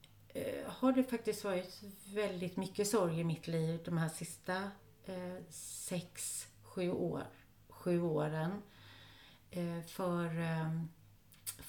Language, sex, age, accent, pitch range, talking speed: Swedish, female, 40-59, native, 155-210 Hz, 115 wpm